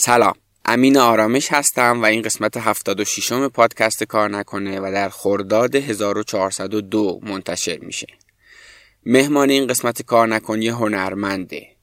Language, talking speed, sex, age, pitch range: Persian, 120 wpm, male, 20-39, 100-120 Hz